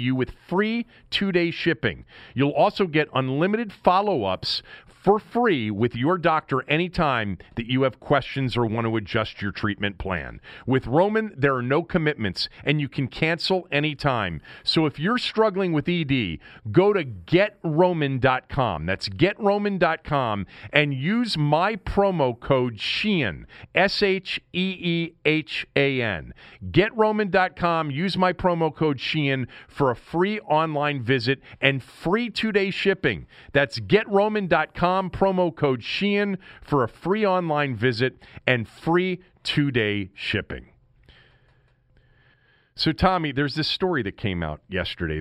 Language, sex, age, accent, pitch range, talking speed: English, male, 40-59, American, 110-175 Hz, 135 wpm